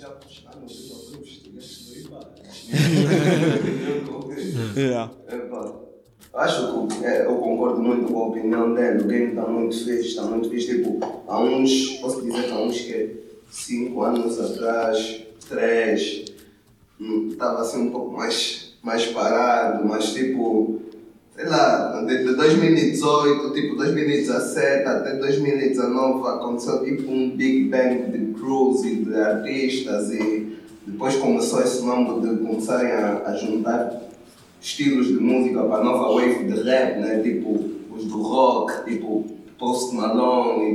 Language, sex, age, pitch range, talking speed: Portuguese, male, 20-39, 110-130 Hz, 130 wpm